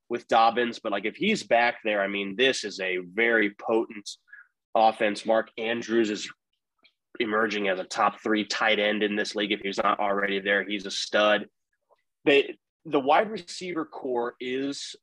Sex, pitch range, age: male, 105-125 Hz, 20-39